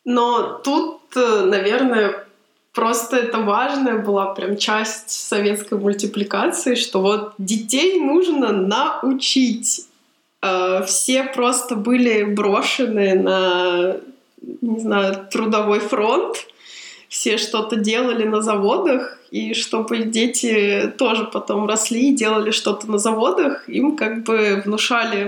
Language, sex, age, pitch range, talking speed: Russian, female, 20-39, 200-255 Hz, 105 wpm